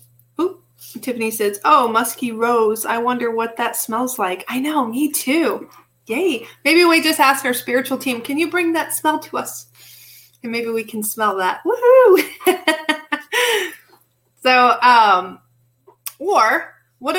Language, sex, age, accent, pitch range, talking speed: English, female, 40-59, American, 210-295 Hz, 145 wpm